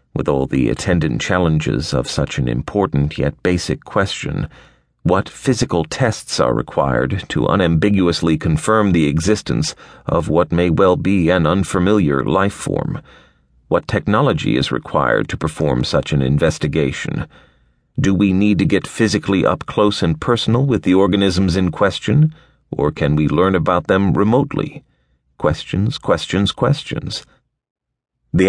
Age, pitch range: 40-59, 80-100 Hz